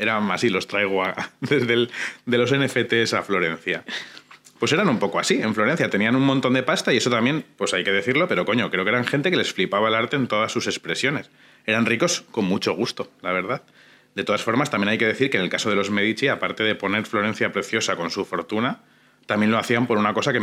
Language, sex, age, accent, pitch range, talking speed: Spanish, male, 30-49, Spanish, 110-135 Hz, 245 wpm